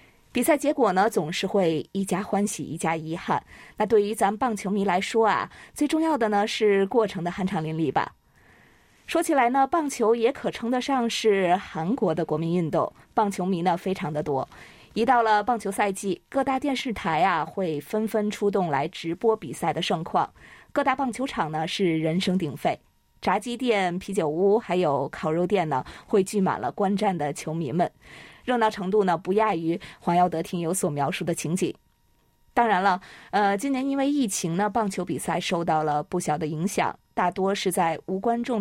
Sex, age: female, 20-39